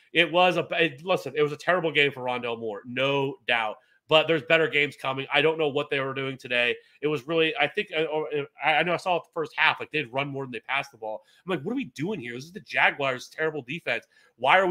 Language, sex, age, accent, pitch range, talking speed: English, male, 30-49, American, 135-165 Hz, 255 wpm